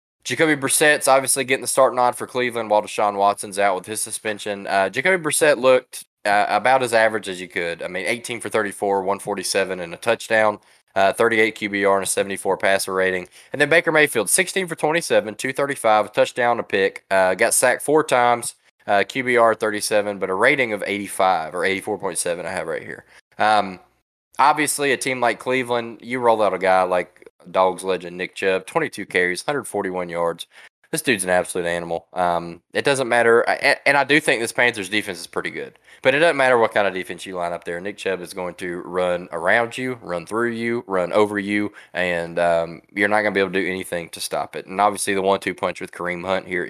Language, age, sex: English, 20-39, male